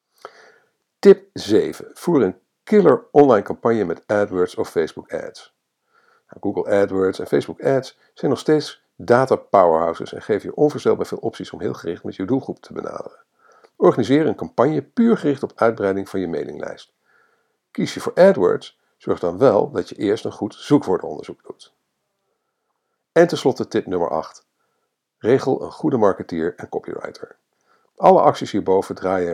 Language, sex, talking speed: Dutch, male, 155 wpm